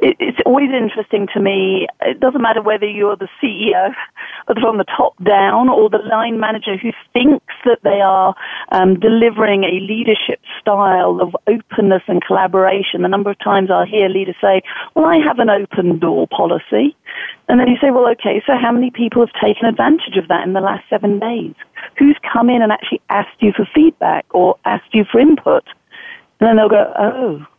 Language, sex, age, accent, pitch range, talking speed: English, female, 40-59, British, 200-270 Hz, 190 wpm